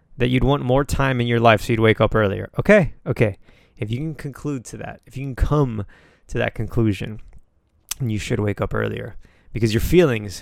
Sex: male